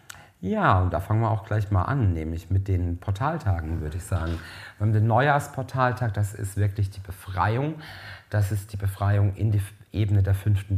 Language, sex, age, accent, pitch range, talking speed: German, male, 40-59, German, 95-110 Hz, 190 wpm